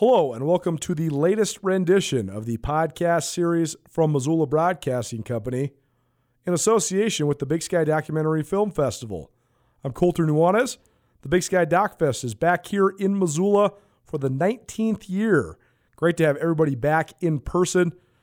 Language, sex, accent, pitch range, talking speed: English, male, American, 140-190 Hz, 155 wpm